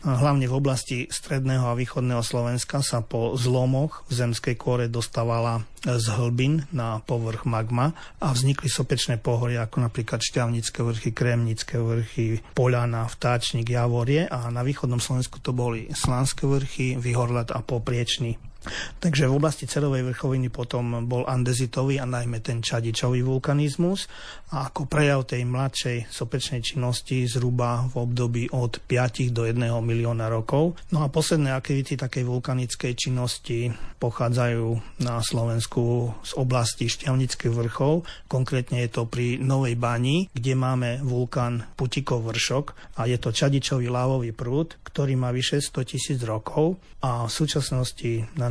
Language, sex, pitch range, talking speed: Slovak, male, 120-135 Hz, 140 wpm